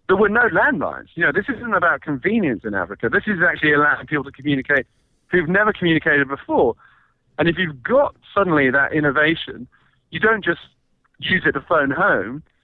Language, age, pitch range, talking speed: English, 40-59, 135-175 Hz, 180 wpm